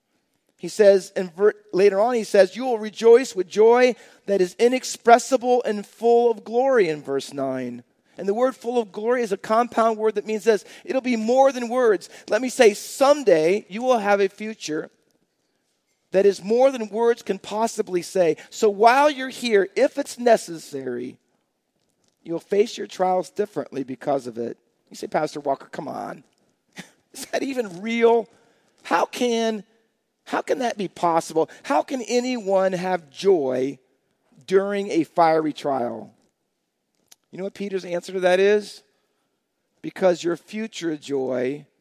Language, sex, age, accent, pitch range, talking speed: English, male, 40-59, American, 160-230 Hz, 160 wpm